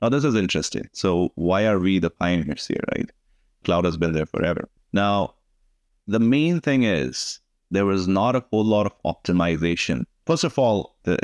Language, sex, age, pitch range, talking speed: English, male, 30-49, 85-100 Hz, 180 wpm